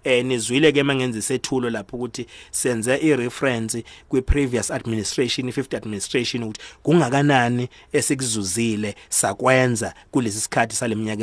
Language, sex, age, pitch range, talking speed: English, male, 30-49, 115-145 Hz, 105 wpm